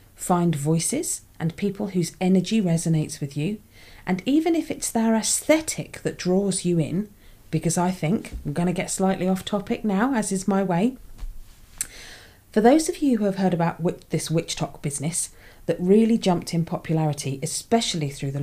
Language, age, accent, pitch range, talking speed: English, 40-59, British, 150-205 Hz, 175 wpm